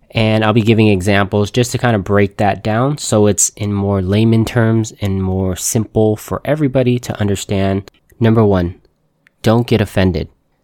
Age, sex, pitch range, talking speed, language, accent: 20-39, male, 95-115 Hz, 170 wpm, English, American